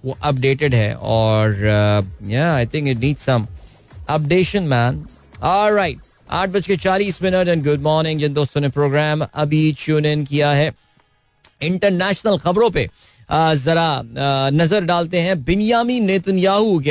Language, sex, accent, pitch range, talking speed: Hindi, male, native, 135-185 Hz, 140 wpm